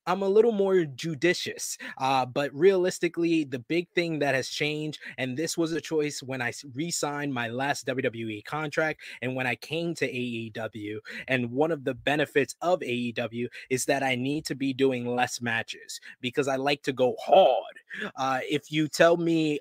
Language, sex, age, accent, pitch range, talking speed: English, male, 20-39, American, 125-155 Hz, 185 wpm